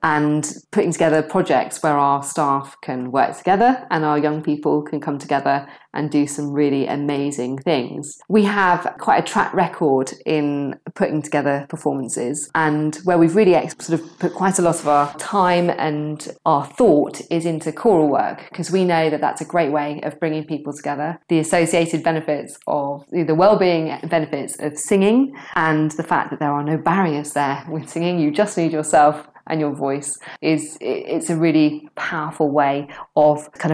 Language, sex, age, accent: English, female, 20-39, British